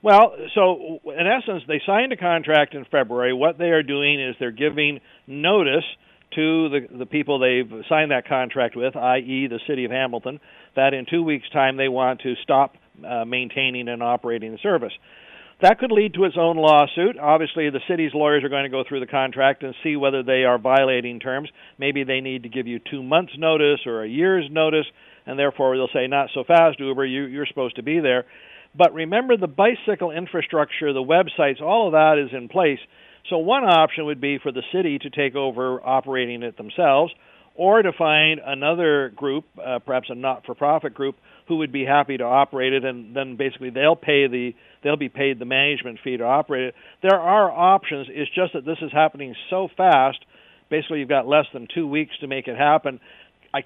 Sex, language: male, English